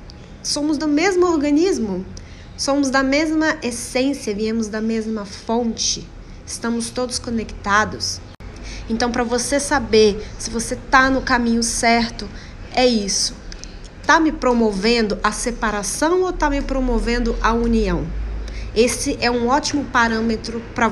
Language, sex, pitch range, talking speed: Portuguese, female, 225-270 Hz, 125 wpm